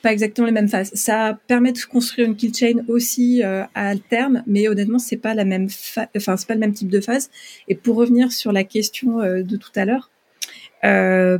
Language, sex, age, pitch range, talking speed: French, female, 30-49, 200-235 Hz, 225 wpm